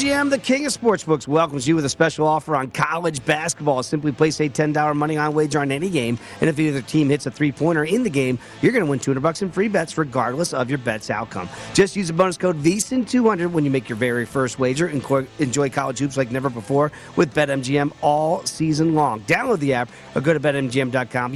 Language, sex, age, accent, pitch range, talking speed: English, male, 40-59, American, 130-165 Hz, 220 wpm